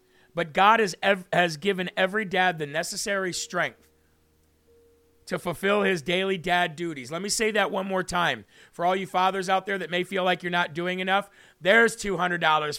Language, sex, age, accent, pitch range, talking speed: English, male, 40-59, American, 165-210 Hz, 190 wpm